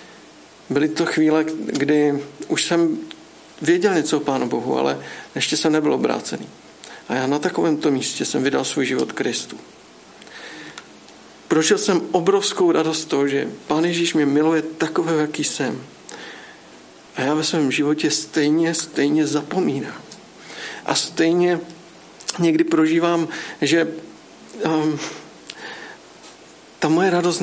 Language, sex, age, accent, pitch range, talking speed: Czech, male, 50-69, native, 145-170 Hz, 125 wpm